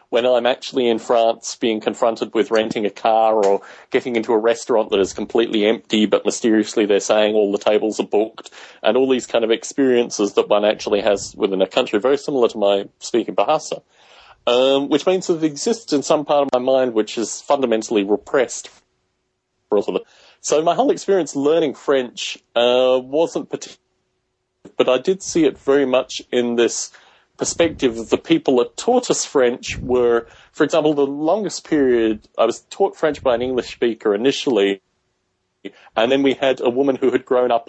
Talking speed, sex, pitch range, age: 185 wpm, male, 105-140 Hz, 30-49